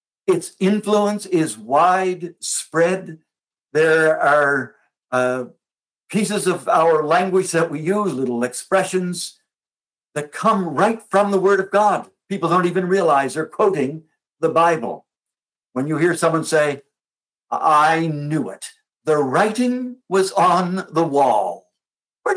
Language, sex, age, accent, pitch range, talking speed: English, male, 60-79, American, 155-200 Hz, 125 wpm